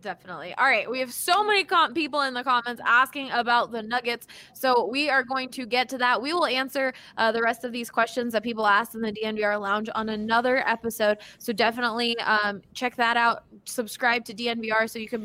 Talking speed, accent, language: 215 wpm, American, English